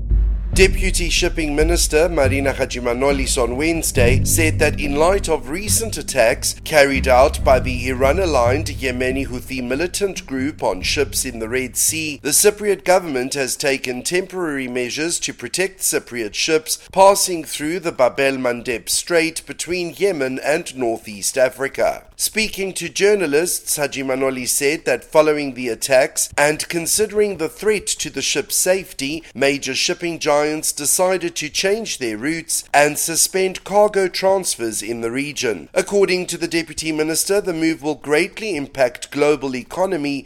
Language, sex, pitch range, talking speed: English, male, 130-175 Hz, 140 wpm